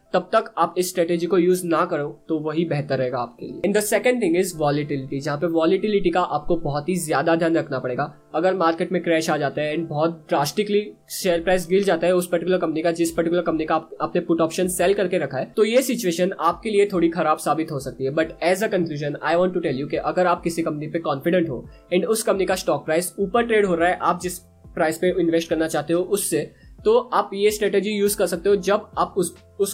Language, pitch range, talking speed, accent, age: Hindi, 160-190 Hz, 245 wpm, native, 20-39